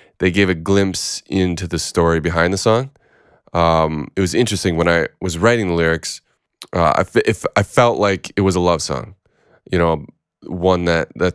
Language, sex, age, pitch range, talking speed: English, male, 20-39, 80-95 Hz, 195 wpm